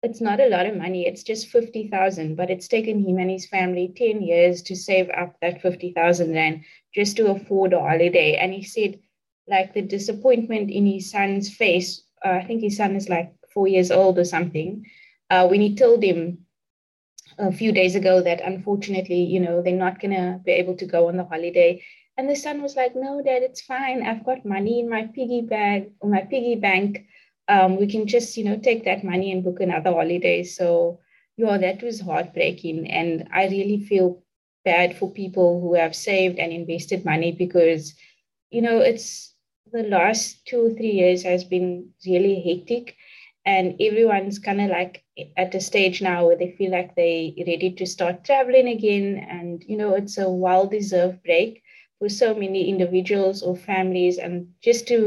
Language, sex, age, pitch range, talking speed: English, female, 20-39, 180-215 Hz, 190 wpm